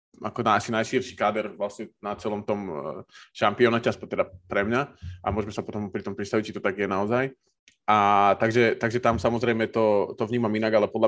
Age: 20-39